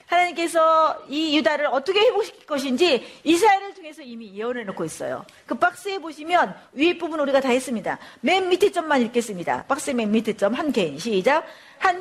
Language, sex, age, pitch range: Korean, female, 40-59, 250-345 Hz